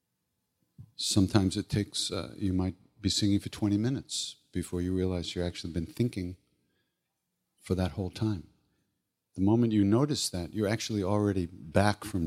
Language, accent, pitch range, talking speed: English, American, 85-105 Hz, 155 wpm